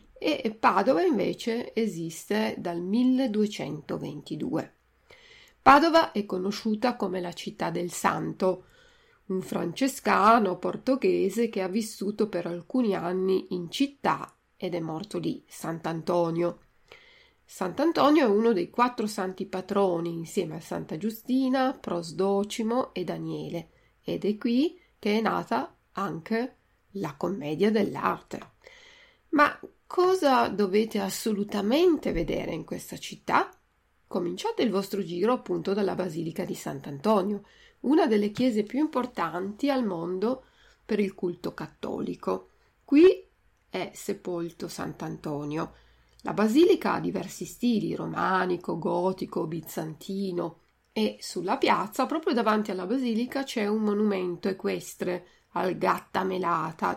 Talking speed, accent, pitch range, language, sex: 115 wpm, native, 180-250 Hz, Italian, female